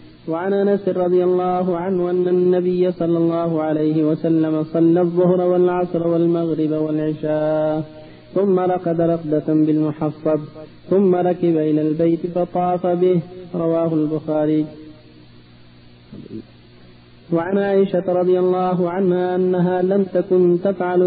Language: Arabic